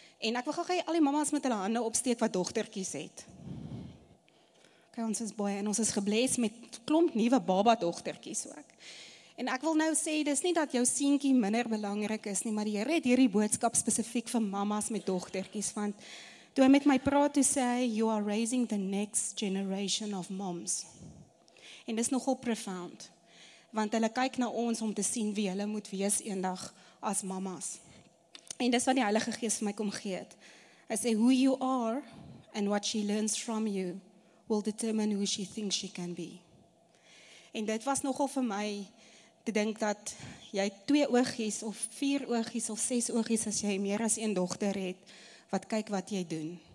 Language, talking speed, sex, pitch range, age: English, 195 wpm, female, 200-245 Hz, 30-49